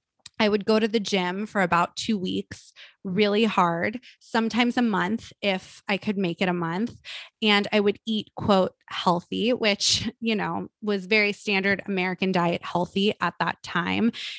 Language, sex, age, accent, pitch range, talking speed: English, female, 20-39, American, 190-225 Hz, 165 wpm